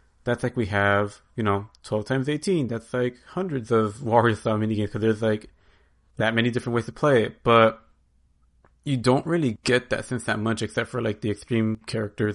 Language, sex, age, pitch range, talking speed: English, male, 30-49, 100-120 Hz, 195 wpm